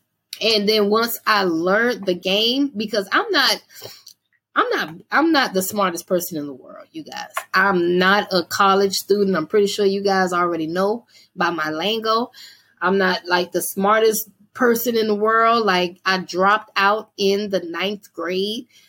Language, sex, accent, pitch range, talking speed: English, female, American, 180-215 Hz, 170 wpm